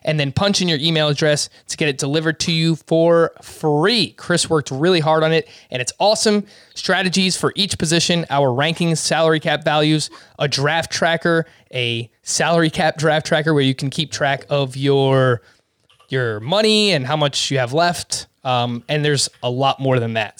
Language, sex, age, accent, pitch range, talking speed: English, male, 20-39, American, 140-165 Hz, 190 wpm